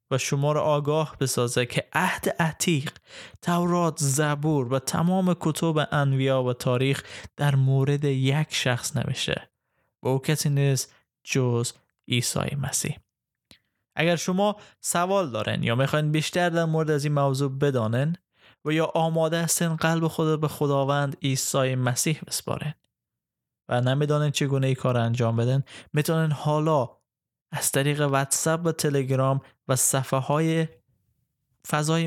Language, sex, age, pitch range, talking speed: Persian, male, 20-39, 130-155 Hz, 130 wpm